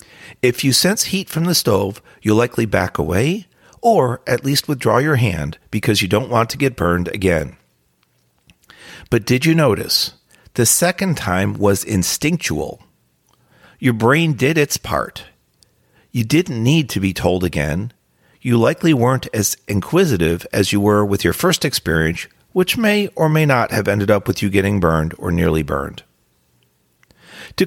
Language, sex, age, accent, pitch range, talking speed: English, male, 40-59, American, 100-155 Hz, 160 wpm